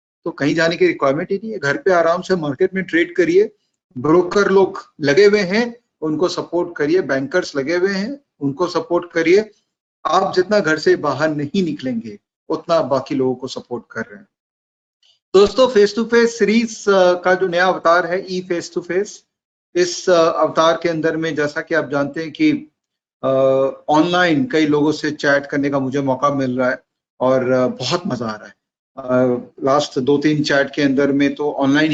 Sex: male